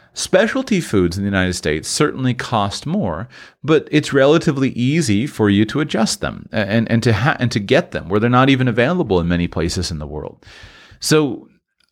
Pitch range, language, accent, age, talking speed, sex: 85-115 Hz, English, American, 40-59, 190 wpm, male